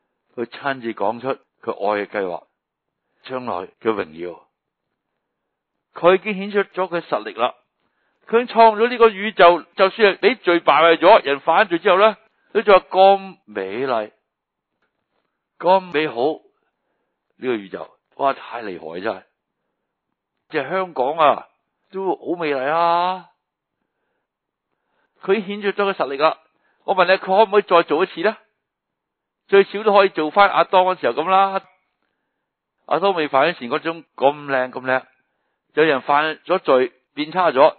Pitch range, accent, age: 135-195 Hz, native, 60-79